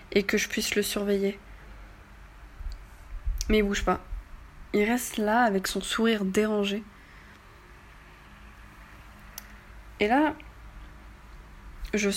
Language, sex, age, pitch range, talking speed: French, female, 20-39, 185-220 Hz, 100 wpm